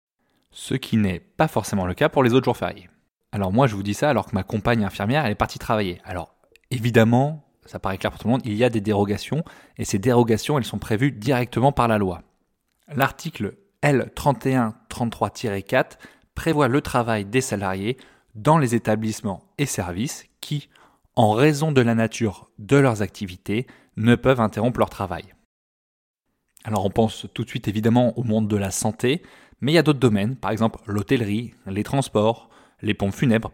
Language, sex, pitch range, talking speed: French, male, 105-125 Hz, 185 wpm